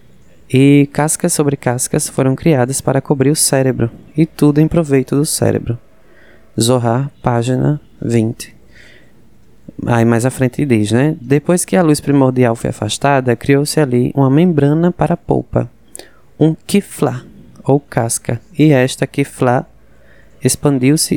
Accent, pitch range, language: Brazilian, 115-145 Hz, Portuguese